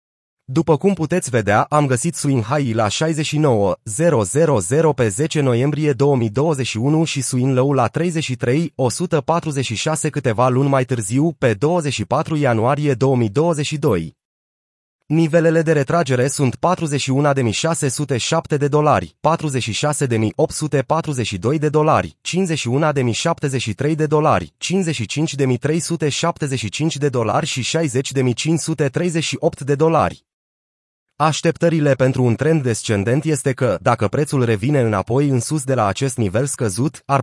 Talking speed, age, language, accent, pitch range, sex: 105 wpm, 30-49, Romanian, native, 125-155 Hz, male